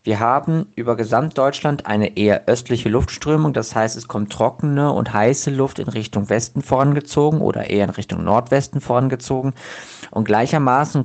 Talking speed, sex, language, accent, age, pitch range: 150 wpm, male, German, German, 50-69, 110-135 Hz